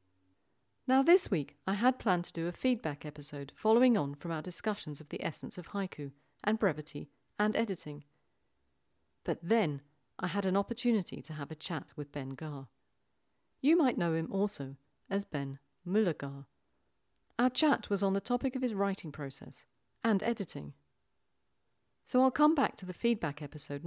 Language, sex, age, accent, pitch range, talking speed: English, female, 40-59, British, 140-215 Hz, 165 wpm